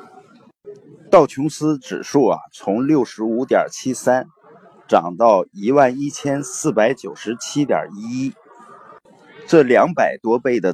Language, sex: Chinese, male